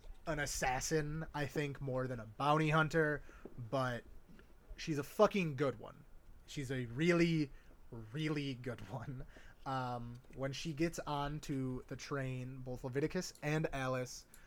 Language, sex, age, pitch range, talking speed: English, male, 20-39, 125-150 Hz, 135 wpm